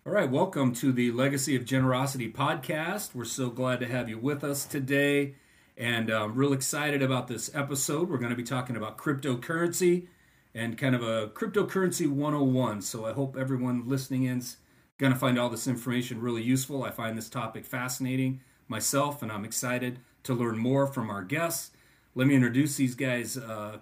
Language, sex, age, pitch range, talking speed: English, male, 40-59, 120-140 Hz, 185 wpm